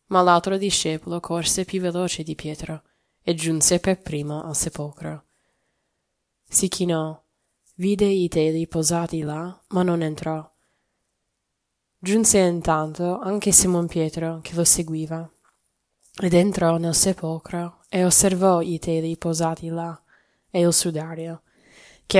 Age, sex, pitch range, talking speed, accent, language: 10-29, female, 155-180 Hz, 125 wpm, native, Italian